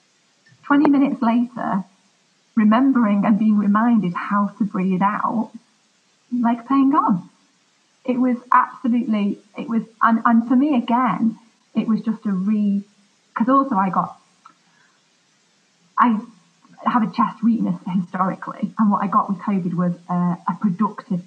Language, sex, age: English, female, 30-49